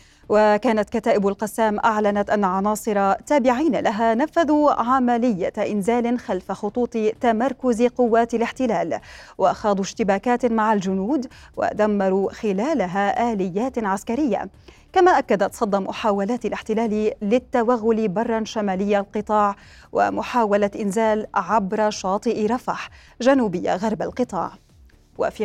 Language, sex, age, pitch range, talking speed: Arabic, female, 30-49, 210-245 Hz, 100 wpm